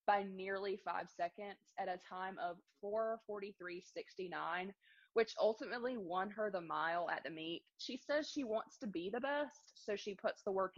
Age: 20-39